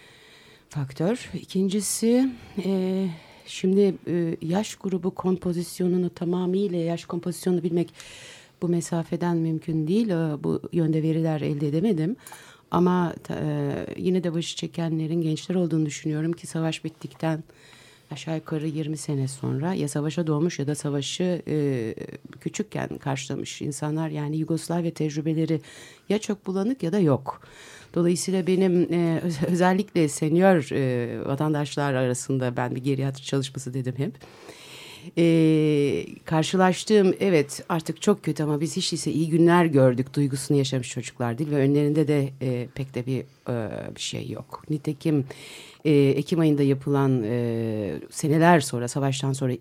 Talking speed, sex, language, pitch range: 130 wpm, female, Turkish, 135-170 Hz